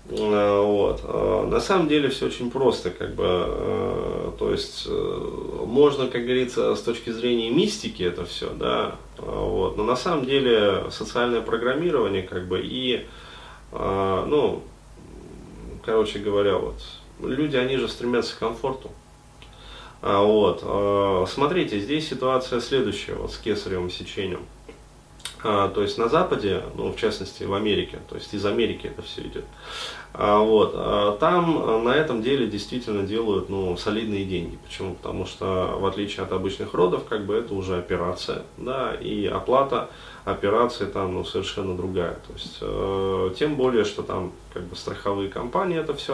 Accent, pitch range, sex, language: native, 100-140 Hz, male, Russian